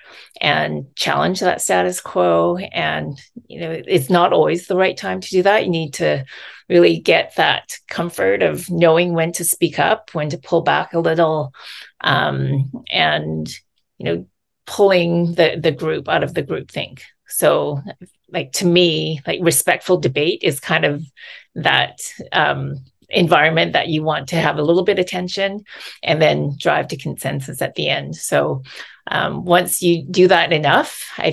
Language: English